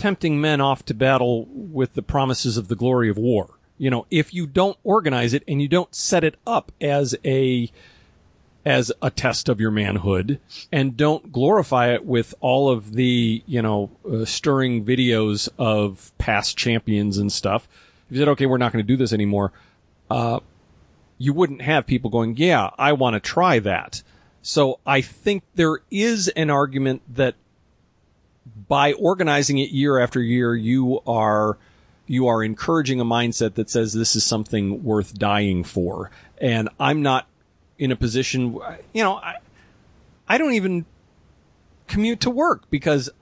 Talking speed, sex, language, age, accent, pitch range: 165 wpm, male, English, 40-59, American, 110-145 Hz